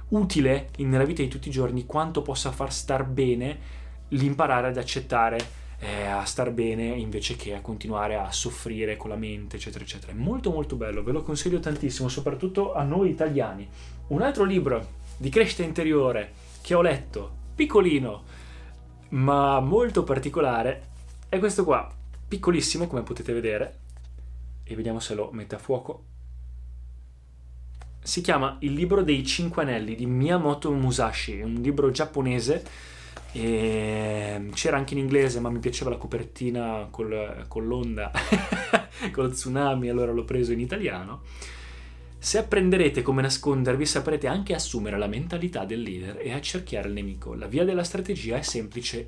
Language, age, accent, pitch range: Italian, 20-39, native, 105-145 Hz